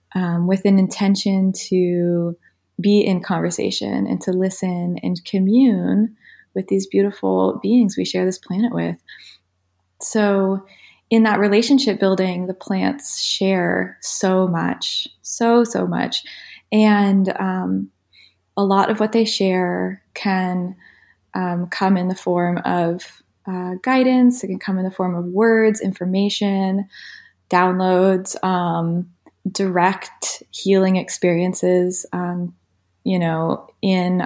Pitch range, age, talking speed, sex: 175-195 Hz, 20-39, 125 wpm, female